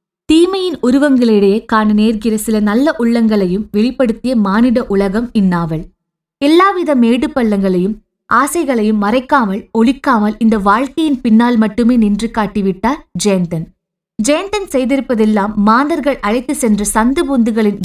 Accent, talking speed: native, 100 wpm